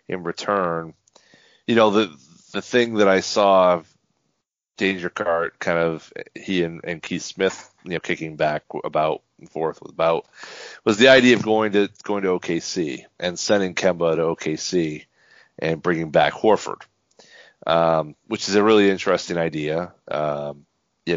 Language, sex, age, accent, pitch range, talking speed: English, male, 40-59, American, 85-110 Hz, 160 wpm